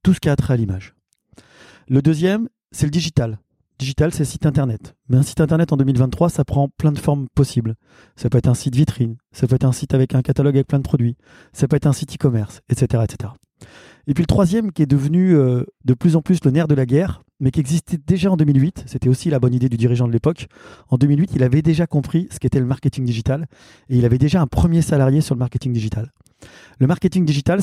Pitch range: 125-160 Hz